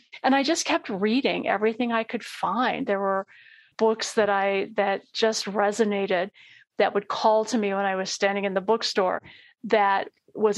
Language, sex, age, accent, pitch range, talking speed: English, female, 50-69, American, 200-230 Hz, 175 wpm